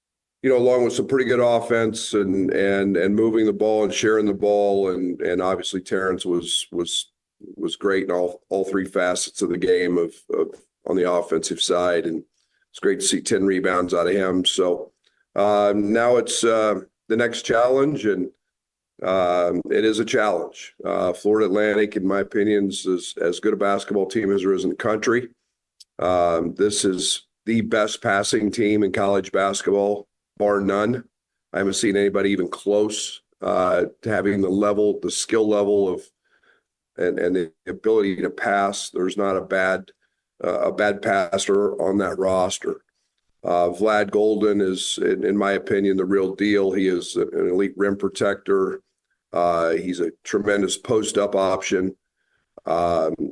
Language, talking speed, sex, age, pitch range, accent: English, 170 wpm, male, 50-69, 95-110 Hz, American